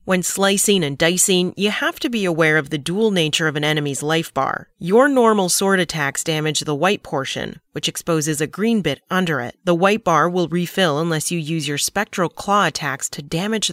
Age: 30-49